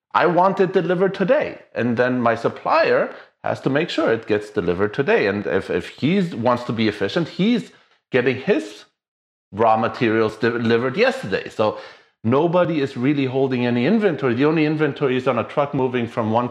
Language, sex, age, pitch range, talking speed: English, male, 30-49, 105-140 Hz, 180 wpm